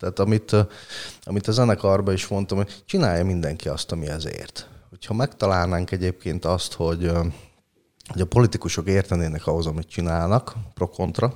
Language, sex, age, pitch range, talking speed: Hungarian, male, 30-49, 90-110 Hz, 145 wpm